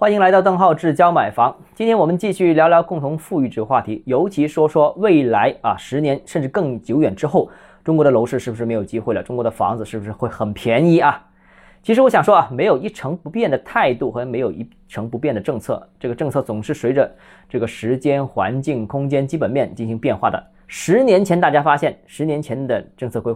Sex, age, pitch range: male, 20-39, 120-185 Hz